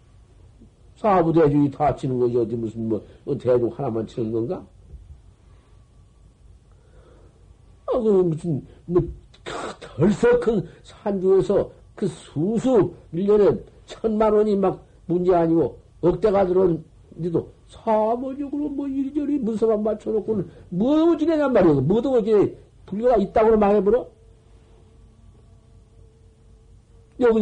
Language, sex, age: Korean, male, 50-69